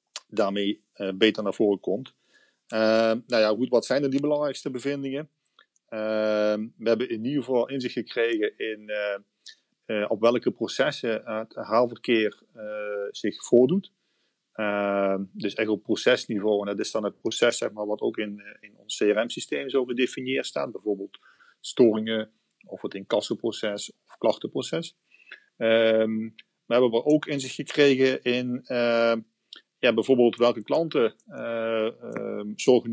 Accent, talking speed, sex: Dutch, 145 wpm, male